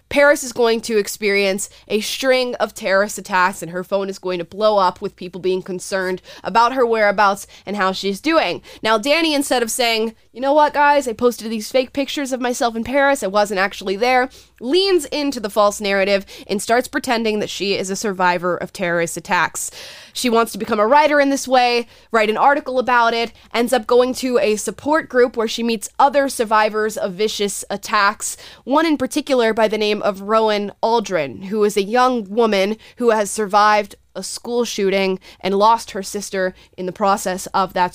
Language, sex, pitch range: English, female, 190-245 Hz